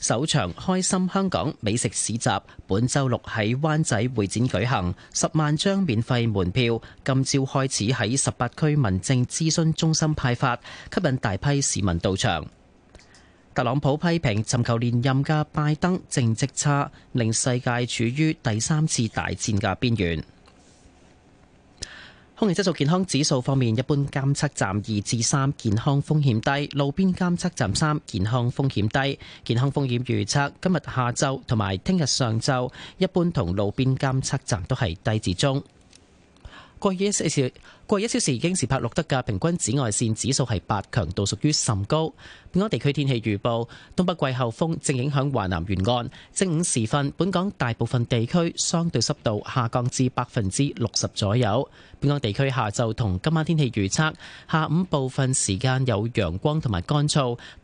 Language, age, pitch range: Chinese, 30-49, 115-155 Hz